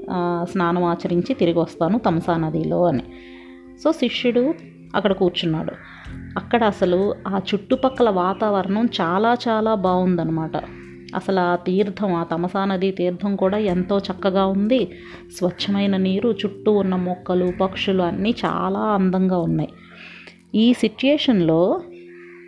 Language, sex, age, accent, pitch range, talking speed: Telugu, female, 30-49, native, 175-225 Hz, 105 wpm